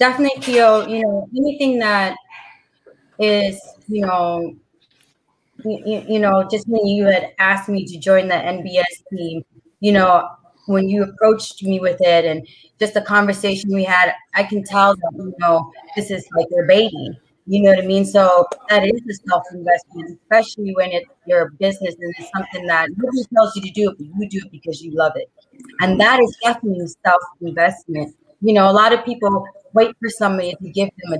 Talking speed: 190 wpm